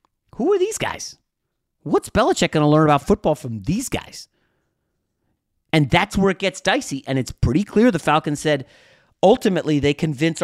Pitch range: 110-155 Hz